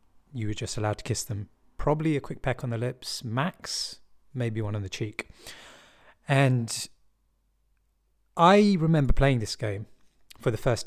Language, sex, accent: English, male, British